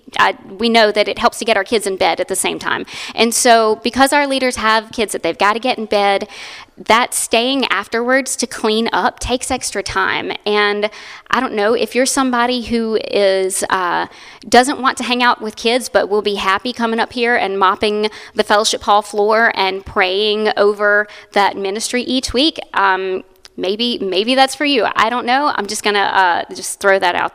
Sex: female